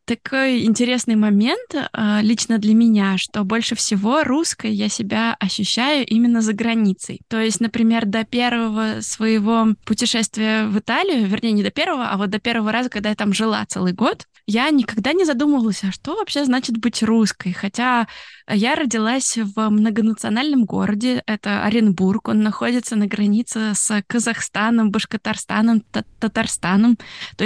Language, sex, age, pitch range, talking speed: Russian, female, 20-39, 210-240 Hz, 145 wpm